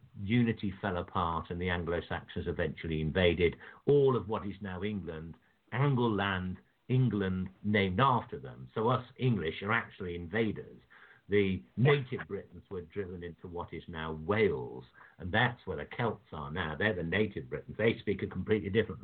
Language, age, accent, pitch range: English, 60-79, British, 85-115 Hz